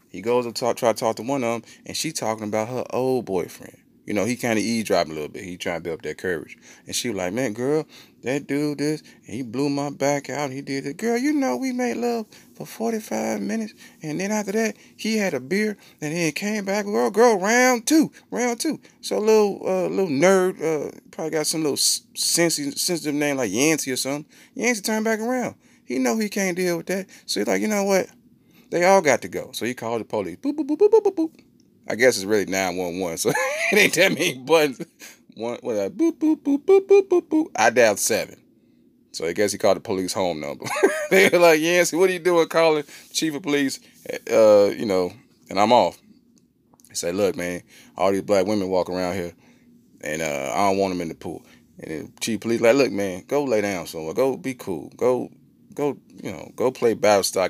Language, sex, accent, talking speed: English, male, American, 235 wpm